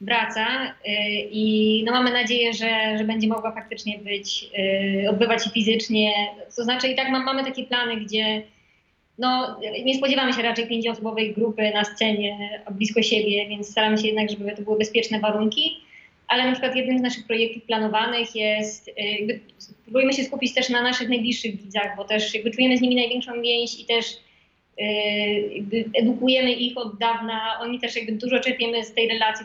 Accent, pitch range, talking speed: native, 215-245 Hz, 160 wpm